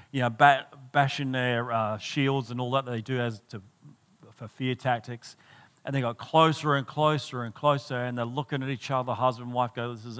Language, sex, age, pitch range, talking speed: English, male, 40-59, 125-155 Hz, 210 wpm